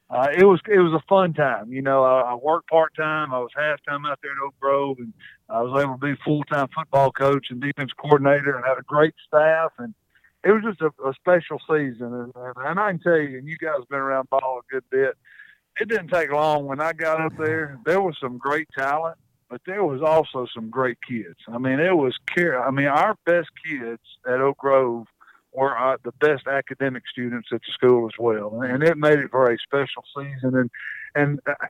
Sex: male